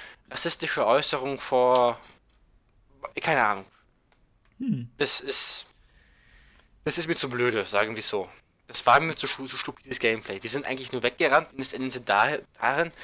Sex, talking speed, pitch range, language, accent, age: male, 145 wpm, 120-155 Hz, German, German, 20-39